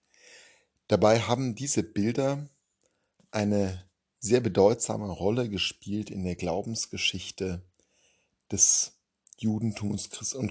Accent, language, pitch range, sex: German, German, 95-110 Hz, male